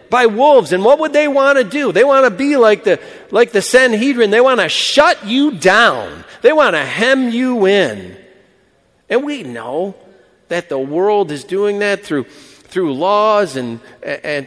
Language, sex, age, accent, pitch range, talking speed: English, male, 40-59, American, 180-235 Hz, 185 wpm